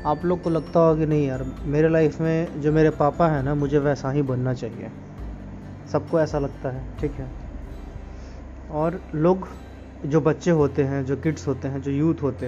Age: 20-39